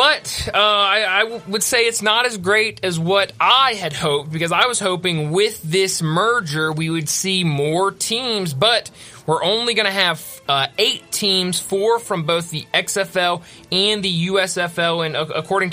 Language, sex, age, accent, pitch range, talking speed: English, male, 30-49, American, 160-210 Hz, 170 wpm